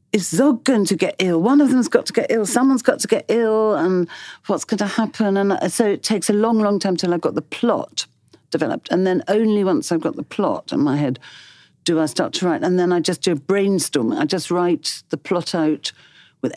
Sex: female